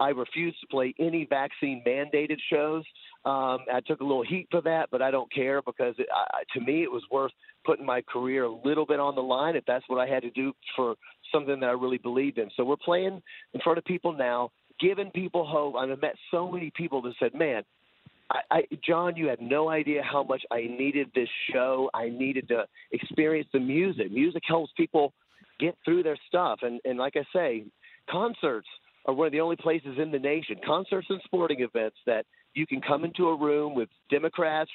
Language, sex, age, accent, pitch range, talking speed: English, male, 40-59, American, 130-165 Hz, 205 wpm